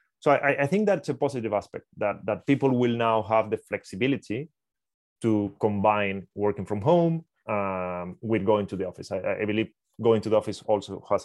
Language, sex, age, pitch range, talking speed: English, male, 30-49, 95-125 Hz, 190 wpm